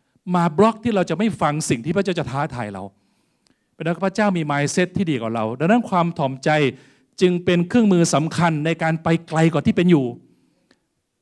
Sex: male